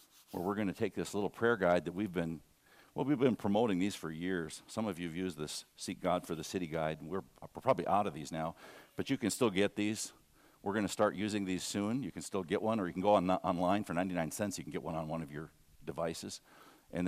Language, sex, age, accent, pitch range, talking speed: English, male, 50-69, American, 80-110 Hz, 265 wpm